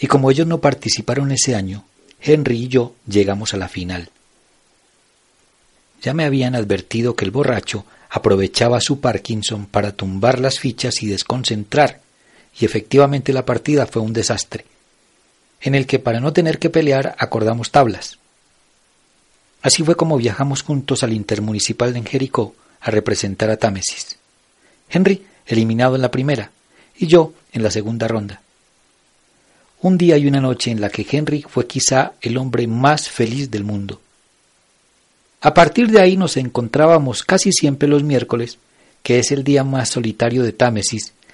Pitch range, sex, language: 110-140 Hz, male, Spanish